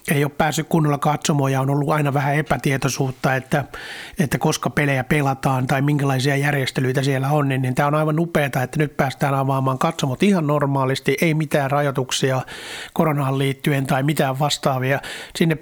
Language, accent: Finnish, native